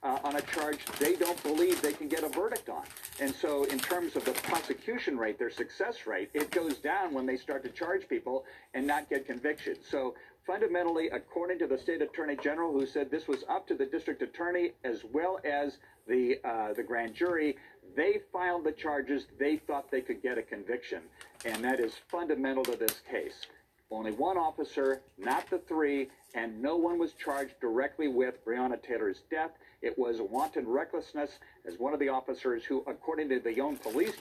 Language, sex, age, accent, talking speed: English, male, 50-69, American, 195 wpm